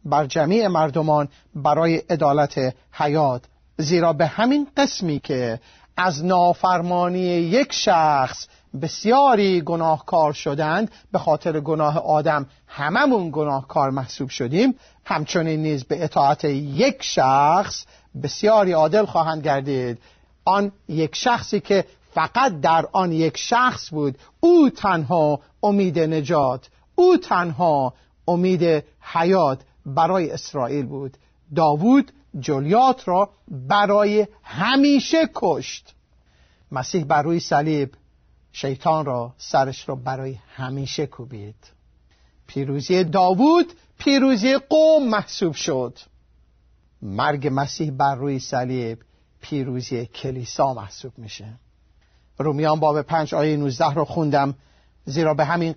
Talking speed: 105 wpm